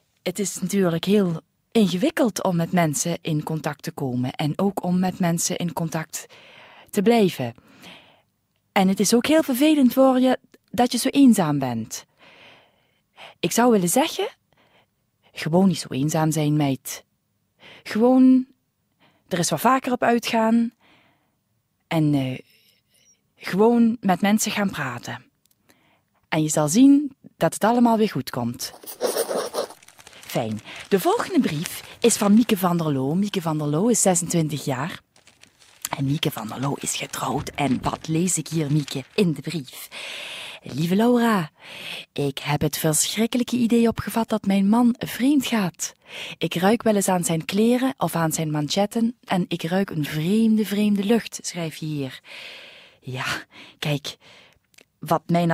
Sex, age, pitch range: female, 20-39, 155-230 Hz